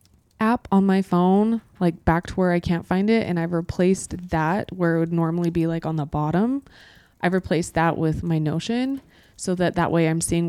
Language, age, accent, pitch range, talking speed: English, 20-39, American, 165-195 Hz, 210 wpm